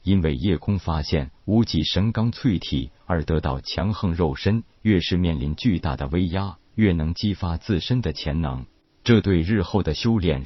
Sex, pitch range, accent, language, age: male, 80-105 Hz, native, Chinese, 50-69